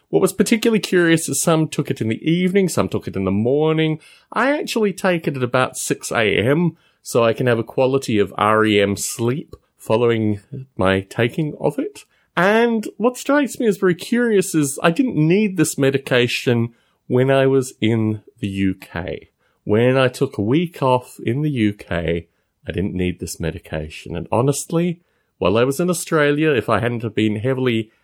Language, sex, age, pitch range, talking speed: English, male, 30-49, 100-165 Hz, 180 wpm